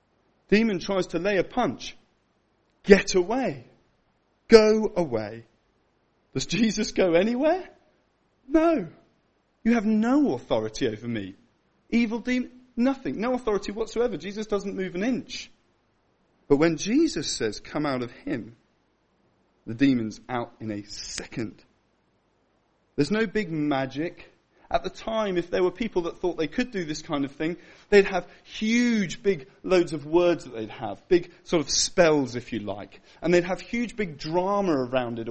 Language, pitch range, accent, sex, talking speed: English, 135-215 Hz, British, male, 155 wpm